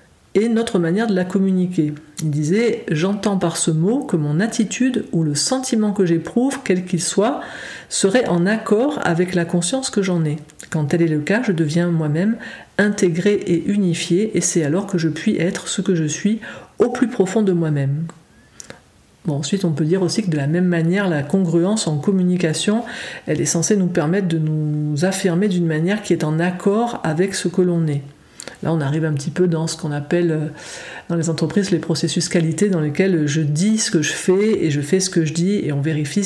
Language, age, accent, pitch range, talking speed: French, 50-69, French, 165-200 Hz, 215 wpm